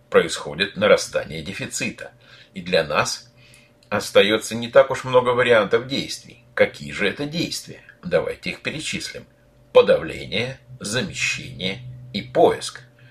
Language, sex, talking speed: Russian, male, 110 wpm